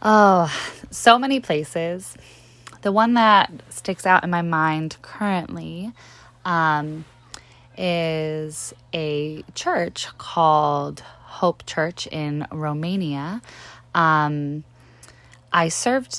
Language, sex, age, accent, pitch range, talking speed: English, female, 10-29, American, 150-175 Hz, 95 wpm